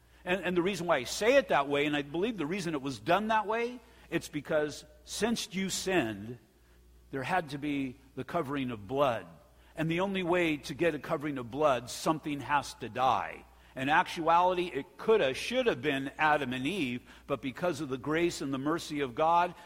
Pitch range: 135-180 Hz